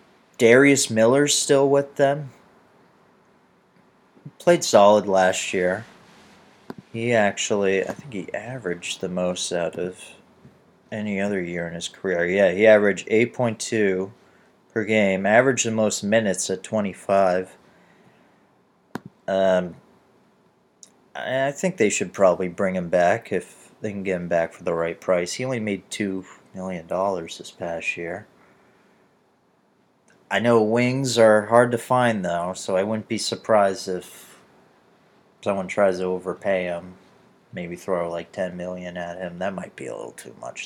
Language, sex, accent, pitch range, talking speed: English, male, American, 90-120 Hz, 145 wpm